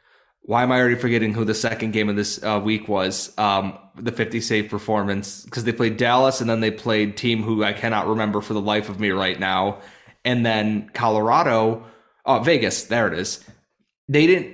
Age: 30-49